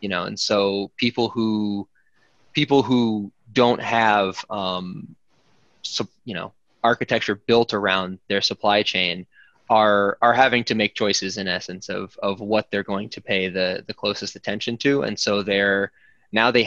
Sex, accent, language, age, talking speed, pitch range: male, American, English, 20-39, 160 wpm, 100-115 Hz